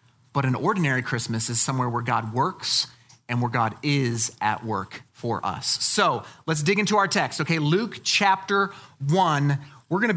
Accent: American